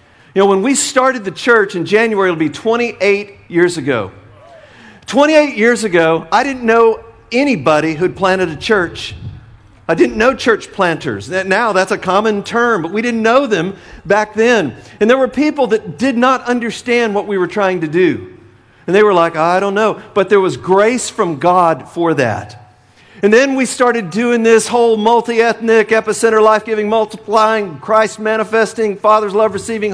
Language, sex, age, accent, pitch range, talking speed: English, male, 50-69, American, 185-230 Hz, 170 wpm